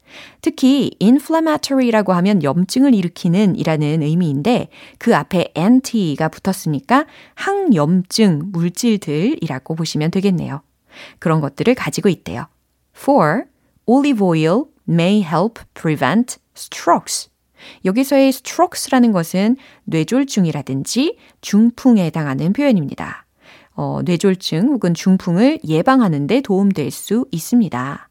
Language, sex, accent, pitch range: Korean, female, native, 165-250 Hz